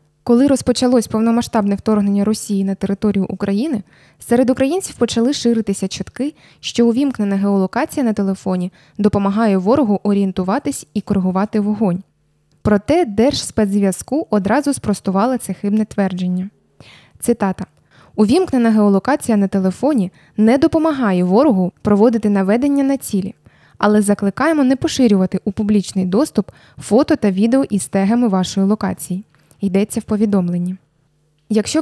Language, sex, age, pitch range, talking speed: Ukrainian, female, 20-39, 195-240 Hz, 115 wpm